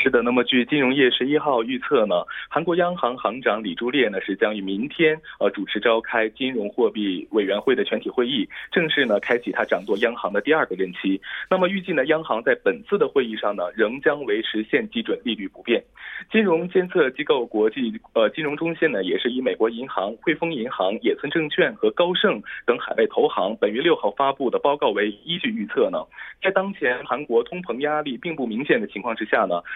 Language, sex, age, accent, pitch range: Korean, male, 20-39, Chinese, 125-205 Hz